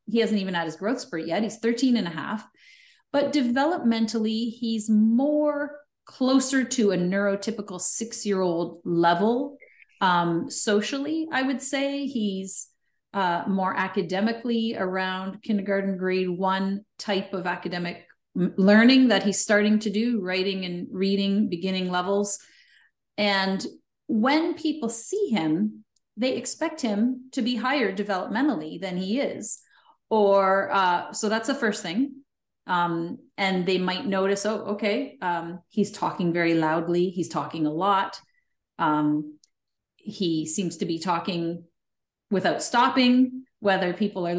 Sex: female